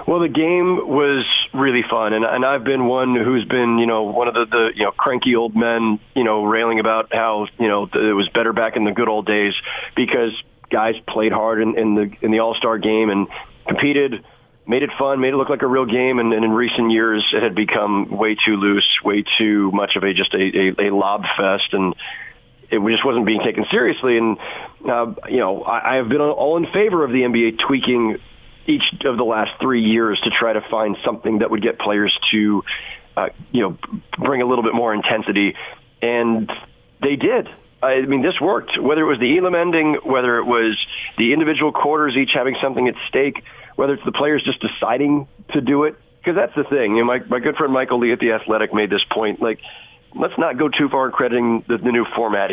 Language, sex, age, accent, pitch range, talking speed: English, male, 40-59, American, 110-135 Hz, 220 wpm